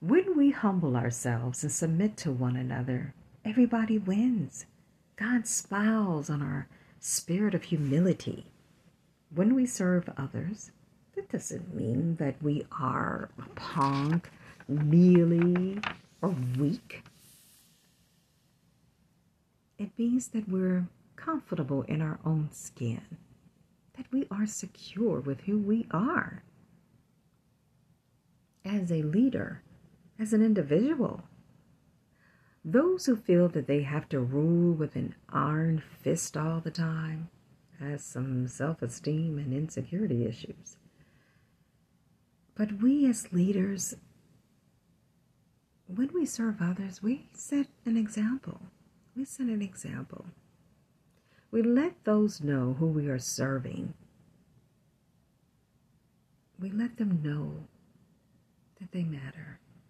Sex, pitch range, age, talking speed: female, 150-210 Hz, 50-69, 105 wpm